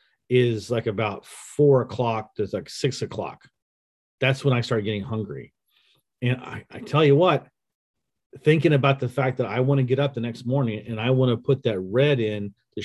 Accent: American